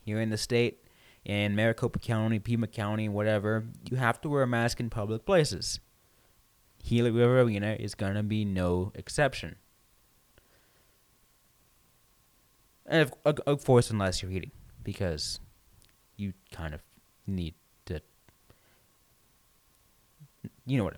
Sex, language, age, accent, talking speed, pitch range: male, English, 20-39, American, 115 wpm, 110-175 Hz